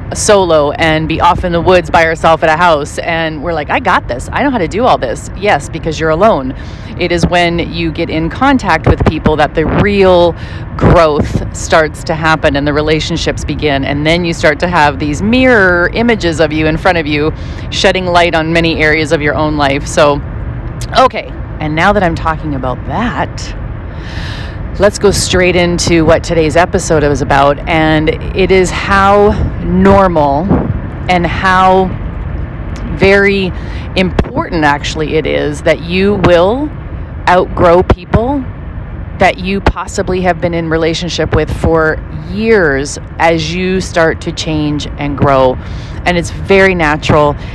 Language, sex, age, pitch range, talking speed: English, female, 30-49, 145-180 Hz, 165 wpm